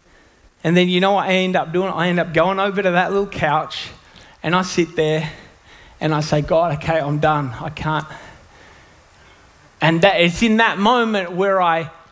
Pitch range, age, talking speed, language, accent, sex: 145-185 Hz, 20-39, 190 wpm, English, Australian, male